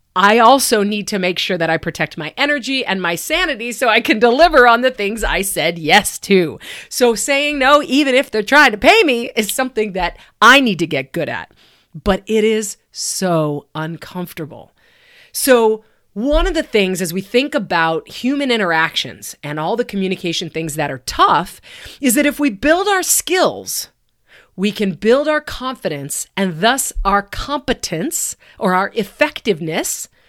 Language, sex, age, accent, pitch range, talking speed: English, female, 40-59, American, 190-275 Hz, 170 wpm